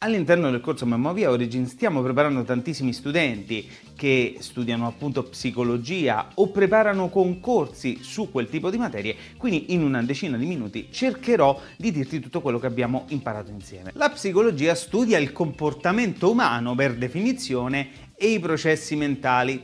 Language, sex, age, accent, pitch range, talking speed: Italian, male, 30-49, native, 130-190 Hz, 145 wpm